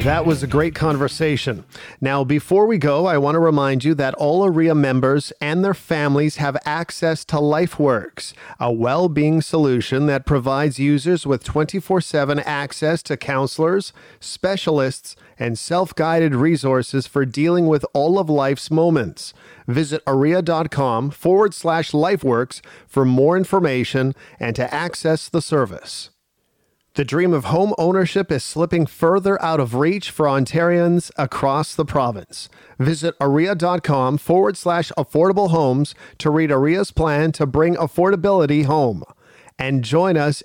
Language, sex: English, male